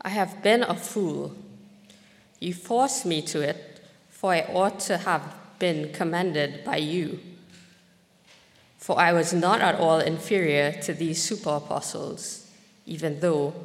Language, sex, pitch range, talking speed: English, female, 155-200 Hz, 140 wpm